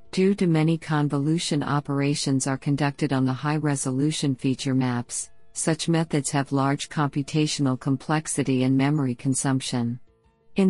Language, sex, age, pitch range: English, female, 50-69, 135-160 Hz